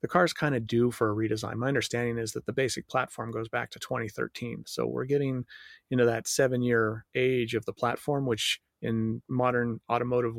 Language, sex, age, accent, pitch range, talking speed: English, male, 30-49, American, 115-135 Hz, 195 wpm